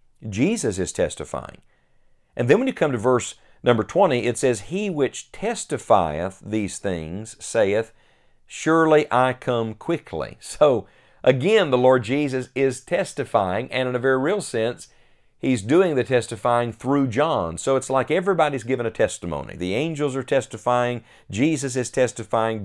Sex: male